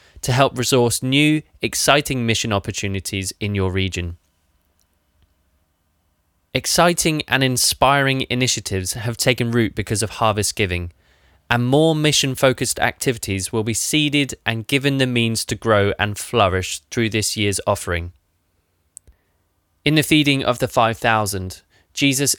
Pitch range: 90-125 Hz